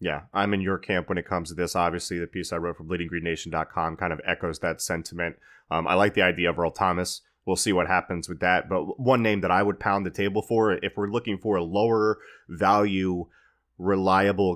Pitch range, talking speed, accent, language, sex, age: 90-105 Hz, 225 wpm, American, English, male, 30-49